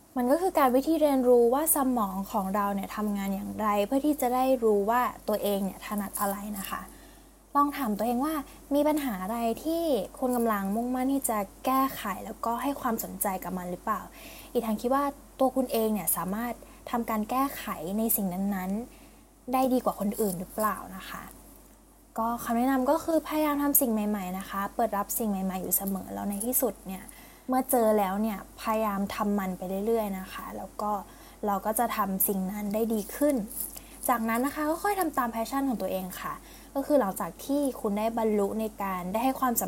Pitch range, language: 200-265 Hz, Thai